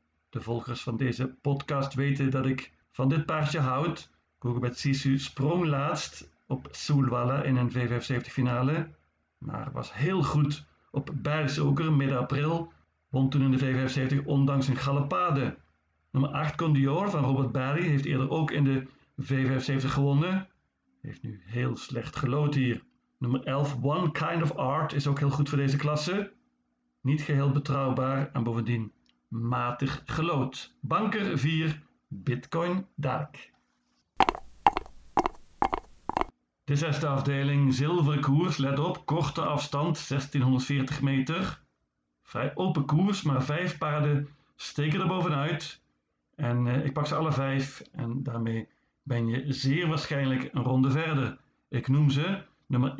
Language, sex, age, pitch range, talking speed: Dutch, male, 50-69, 130-150 Hz, 140 wpm